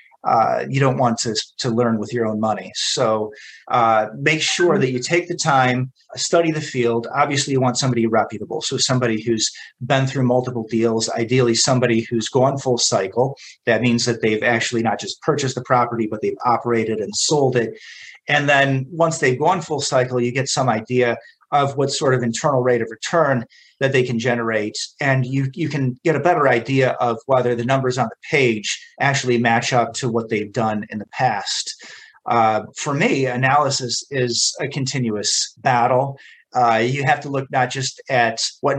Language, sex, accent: English, male, American